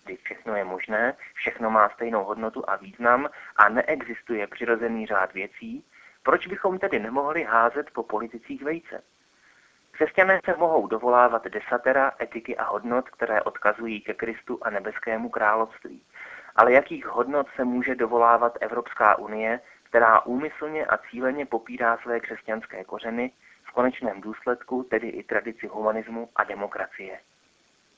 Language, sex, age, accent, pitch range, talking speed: Czech, male, 30-49, native, 110-140 Hz, 135 wpm